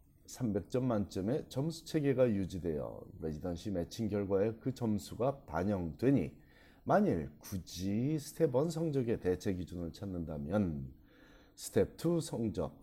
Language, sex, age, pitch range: Korean, male, 30-49, 85-120 Hz